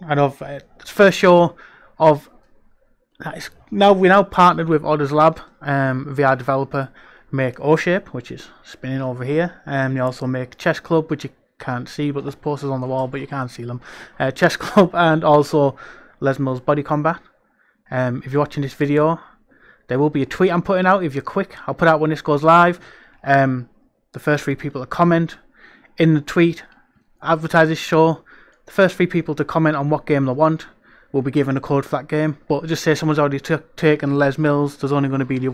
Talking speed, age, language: 220 wpm, 20-39, English